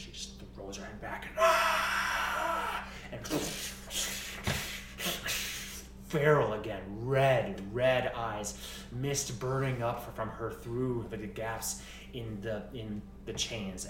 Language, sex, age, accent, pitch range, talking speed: English, male, 30-49, American, 65-95 Hz, 130 wpm